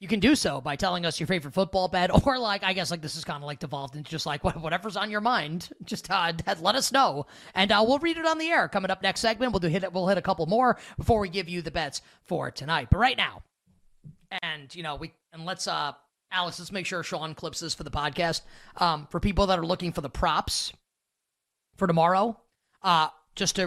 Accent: American